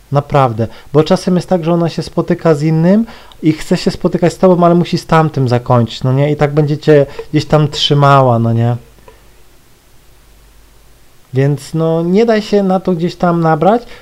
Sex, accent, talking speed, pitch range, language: male, native, 180 wpm, 130-175 Hz, Polish